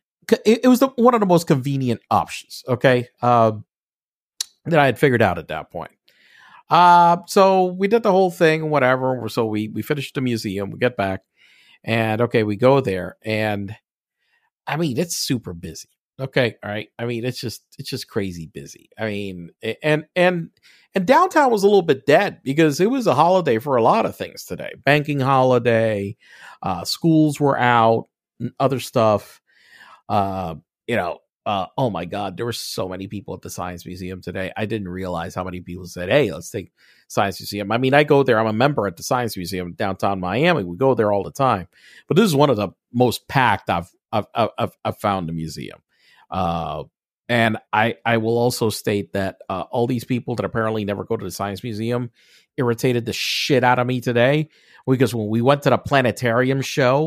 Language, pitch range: English, 100-140 Hz